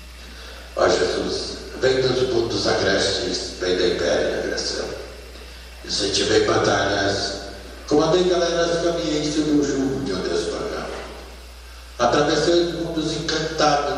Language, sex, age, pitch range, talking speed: Portuguese, male, 60-79, 105-155 Hz, 135 wpm